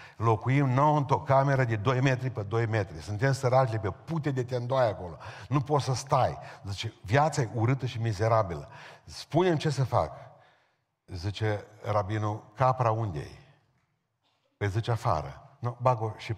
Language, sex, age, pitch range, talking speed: Romanian, male, 50-69, 95-130 Hz, 150 wpm